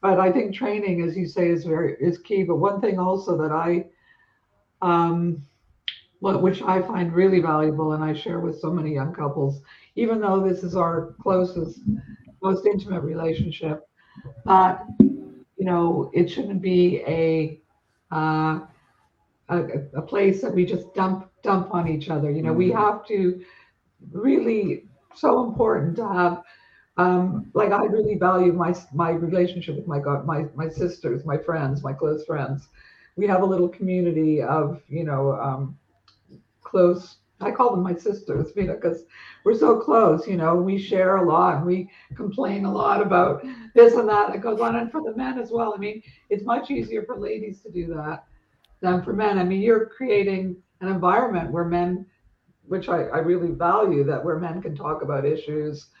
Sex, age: female, 60-79